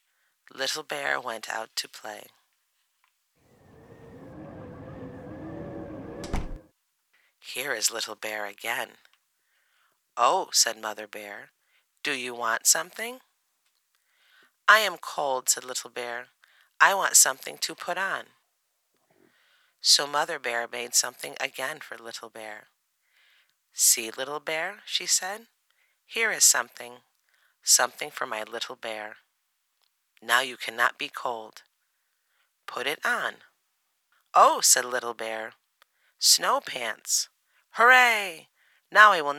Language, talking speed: English, 110 wpm